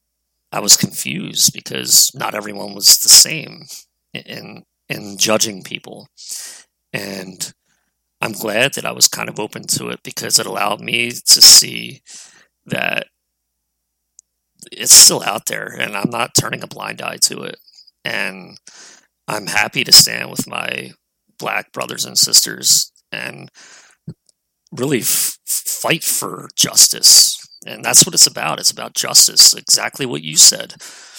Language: English